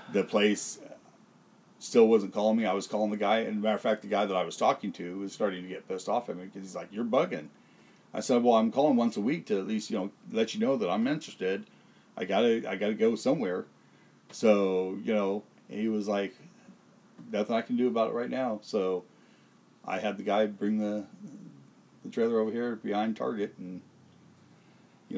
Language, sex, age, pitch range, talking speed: English, male, 40-59, 100-115 Hz, 210 wpm